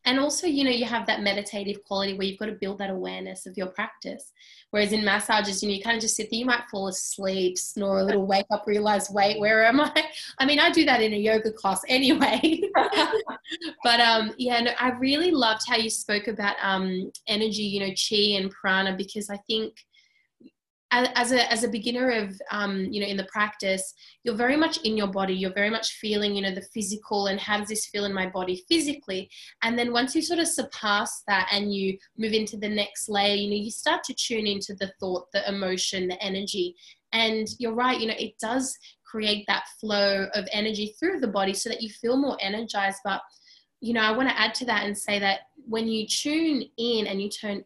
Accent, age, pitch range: Australian, 20-39, 200-240 Hz